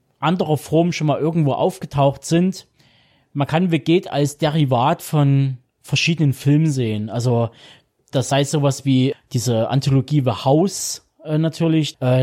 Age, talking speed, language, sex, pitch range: 20-39, 140 wpm, German, male, 140-170 Hz